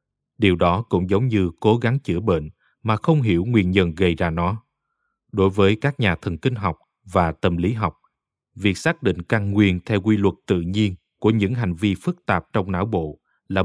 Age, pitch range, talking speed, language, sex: 20-39, 90-115 Hz, 210 wpm, Vietnamese, male